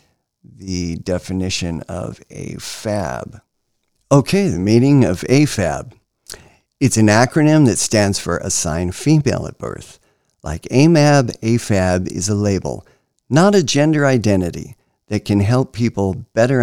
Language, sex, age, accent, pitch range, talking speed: English, male, 50-69, American, 95-140 Hz, 125 wpm